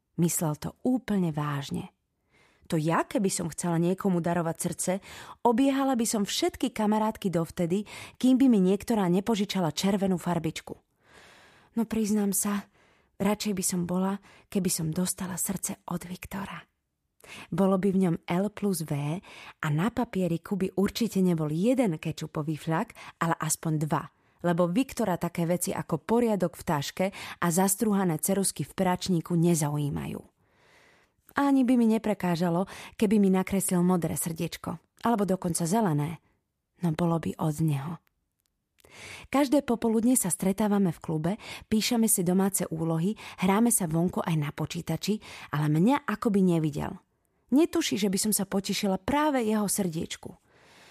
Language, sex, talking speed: Slovak, female, 140 wpm